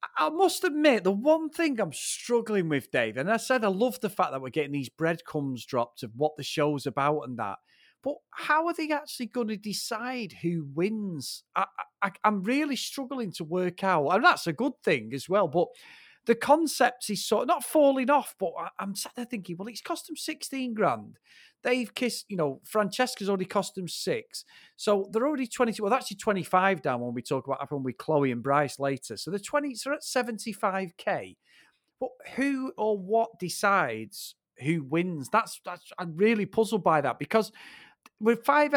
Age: 40-59